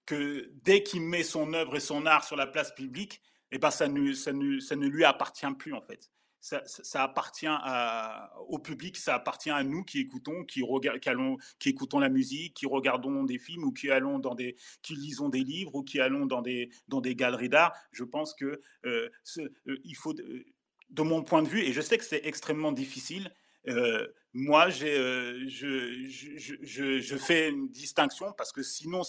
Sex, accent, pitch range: male, French, 135-225 Hz